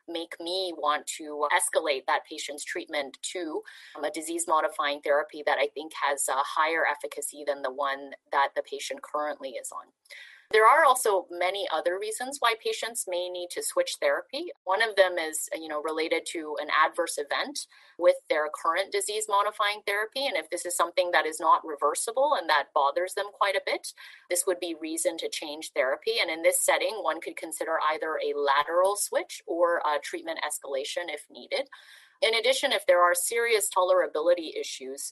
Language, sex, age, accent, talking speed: English, female, 30-49, American, 180 wpm